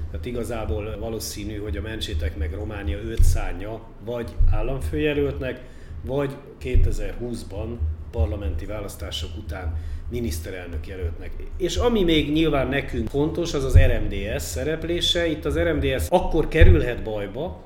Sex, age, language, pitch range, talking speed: male, 40-59, Hungarian, 100-135 Hz, 120 wpm